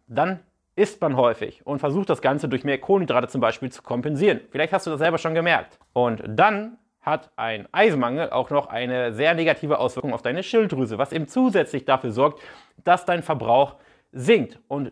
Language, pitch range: German, 130-165 Hz